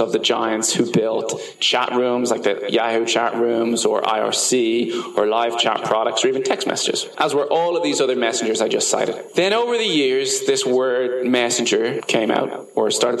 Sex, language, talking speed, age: male, English, 195 wpm, 20-39